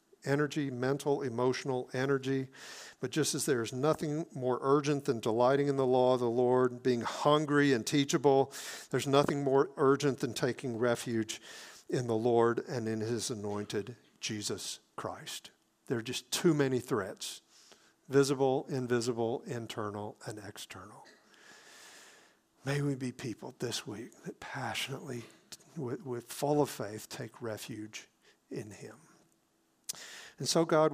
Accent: American